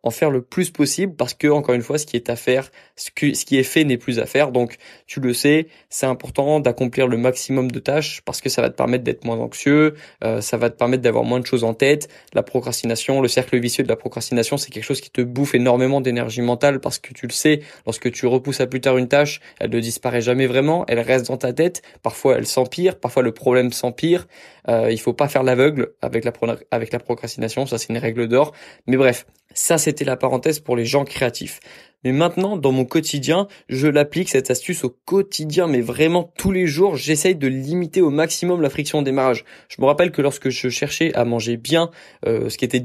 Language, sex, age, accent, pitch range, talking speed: French, male, 20-39, French, 120-150 Hz, 230 wpm